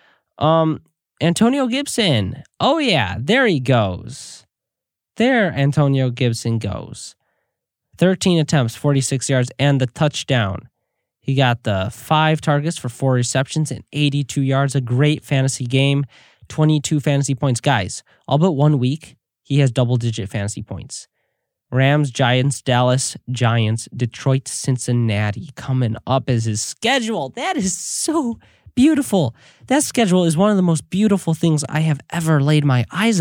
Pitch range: 125-170 Hz